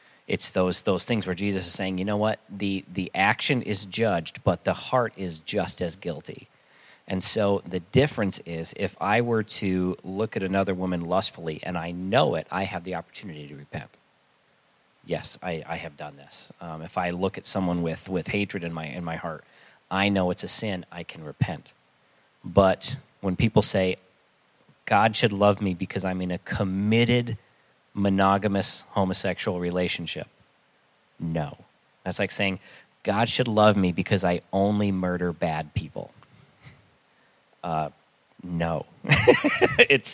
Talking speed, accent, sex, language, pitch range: 160 wpm, American, male, English, 90-105 Hz